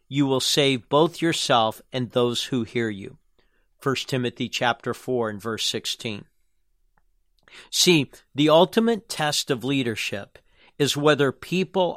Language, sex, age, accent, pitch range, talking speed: English, male, 50-69, American, 125-160 Hz, 130 wpm